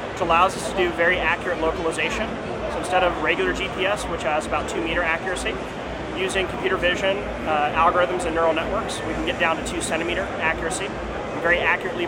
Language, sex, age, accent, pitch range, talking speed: English, male, 30-49, American, 170-190 Hz, 185 wpm